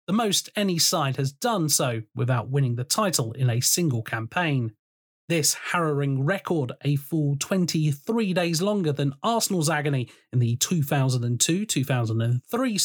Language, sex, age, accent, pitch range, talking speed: English, male, 30-49, British, 140-195 Hz, 130 wpm